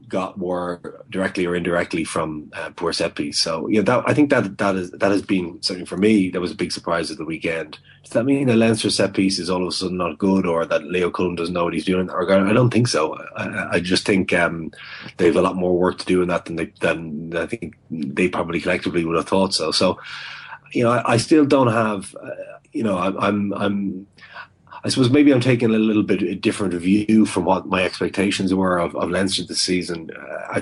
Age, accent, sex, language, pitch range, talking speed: 30-49, Irish, male, English, 90-105 Hz, 240 wpm